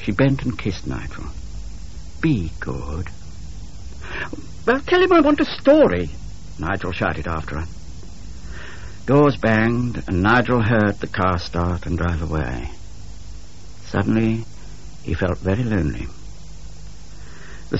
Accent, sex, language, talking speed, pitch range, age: British, male, English, 120 wpm, 80-115 Hz, 60-79